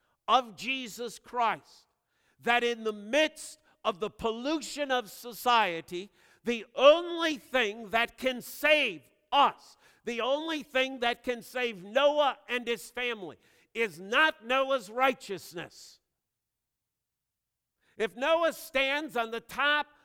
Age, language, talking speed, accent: 50-69, English, 115 wpm, American